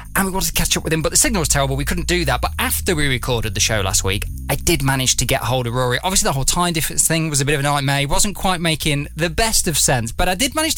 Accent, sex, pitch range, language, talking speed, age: British, male, 125-170 Hz, English, 315 wpm, 20-39